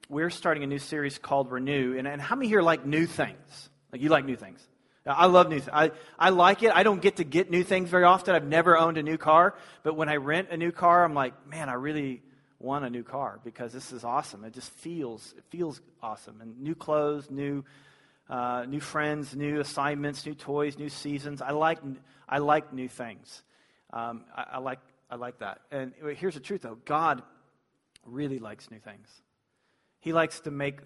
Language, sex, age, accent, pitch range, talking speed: English, male, 40-59, American, 125-160 Hz, 210 wpm